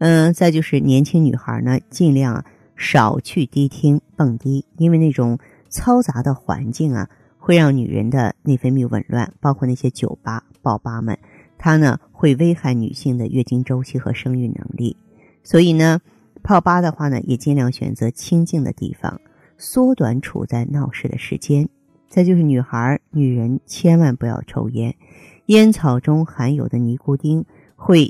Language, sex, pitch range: Chinese, female, 125-165 Hz